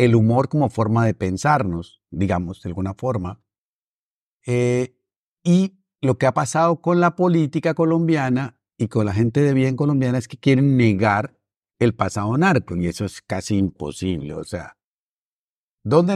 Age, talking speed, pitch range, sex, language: 50-69, 155 wpm, 120-165 Hz, male, Spanish